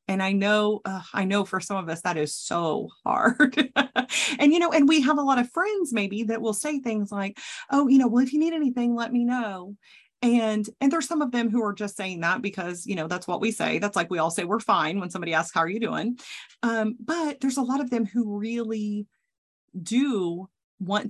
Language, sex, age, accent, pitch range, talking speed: English, female, 30-49, American, 195-250 Hz, 240 wpm